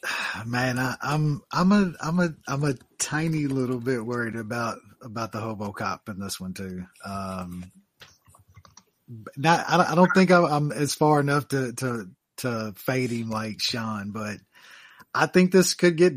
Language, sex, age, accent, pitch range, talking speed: English, male, 30-49, American, 115-140 Hz, 170 wpm